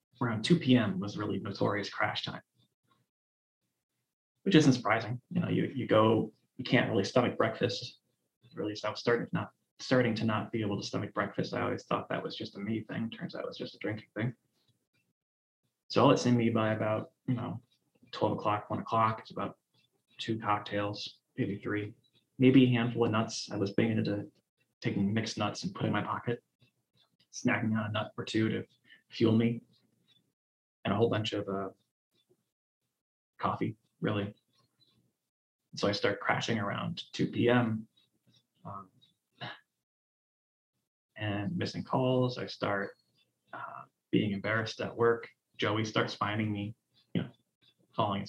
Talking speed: 160 wpm